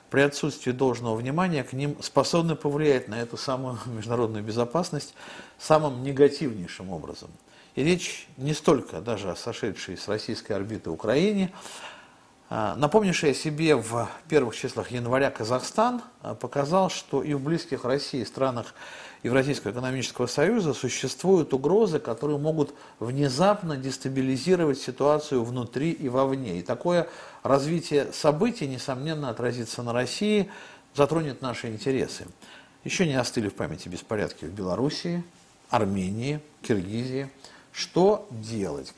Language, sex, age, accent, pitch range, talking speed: Russian, male, 50-69, native, 120-155 Hz, 120 wpm